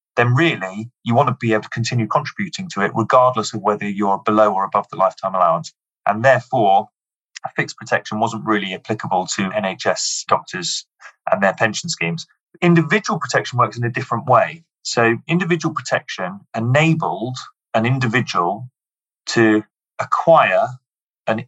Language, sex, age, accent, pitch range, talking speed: English, male, 30-49, British, 110-150 Hz, 150 wpm